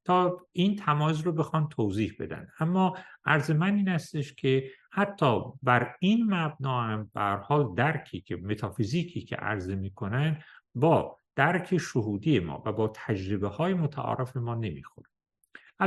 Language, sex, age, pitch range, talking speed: Persian, male, 50-69, 105-155 Hz, 135 wpm